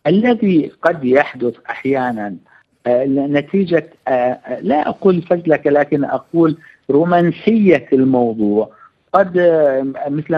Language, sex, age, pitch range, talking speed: Arabic, male, 50-69, 135-170 Hz, 80 wpm